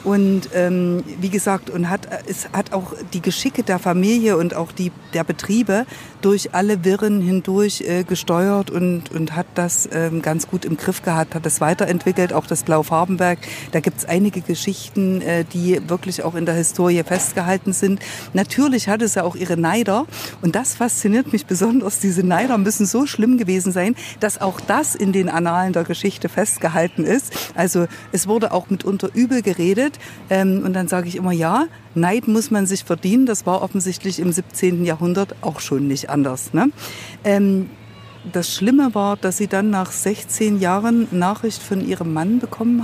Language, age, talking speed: German, 50-69, 175 wpm